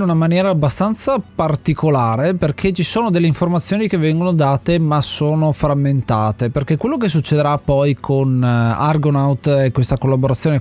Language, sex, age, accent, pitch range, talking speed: Italian, male, 30-49, native, 130-165 Hz, 145 wpm